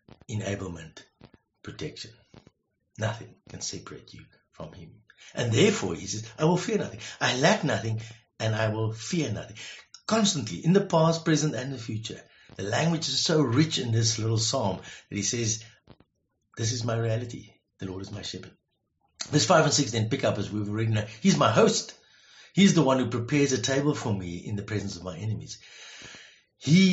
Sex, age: male, 60-79